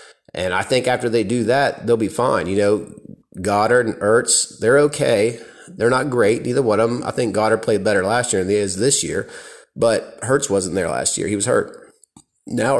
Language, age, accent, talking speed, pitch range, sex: English, 30-49, American, 215 wpm, 100-125 Hz, male